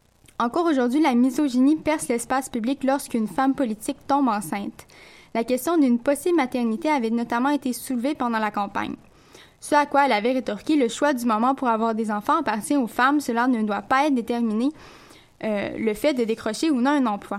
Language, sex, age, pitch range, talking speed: French, female, 10-29, 225-275 Hz, 195 wpm